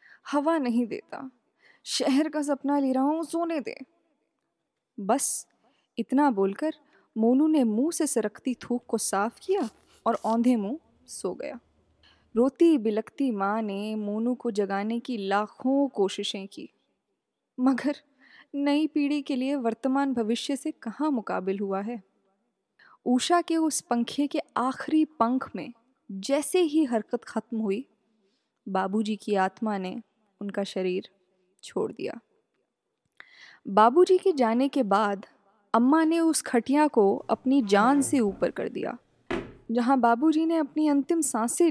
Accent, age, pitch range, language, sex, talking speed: native, 10-29, 210-275 Hz, Hindi, female, 135 wpm